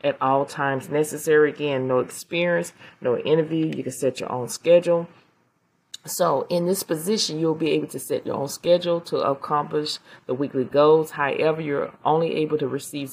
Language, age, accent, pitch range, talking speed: English, 30-49, American, 130-155 Hz, 175 wpm